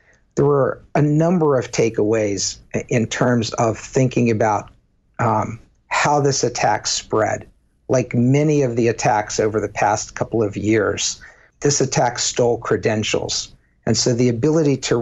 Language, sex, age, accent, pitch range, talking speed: English, male, 50-69, American, 110-135 Hz, 145 wpm